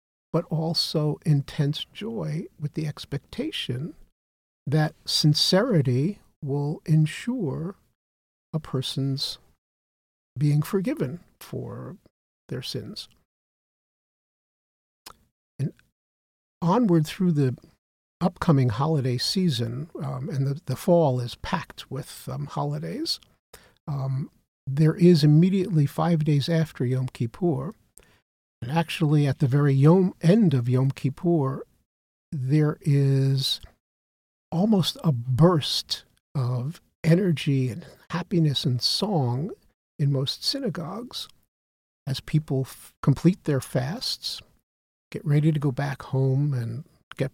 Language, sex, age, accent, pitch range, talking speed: English, male, 50-69, American, 135-165 Hz, 100 wpm